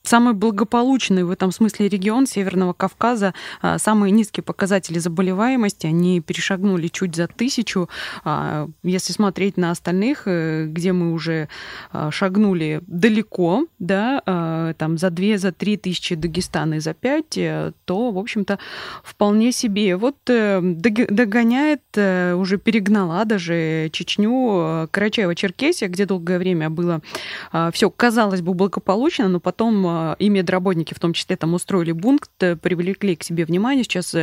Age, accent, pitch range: 20-39, native, 175-220 Hz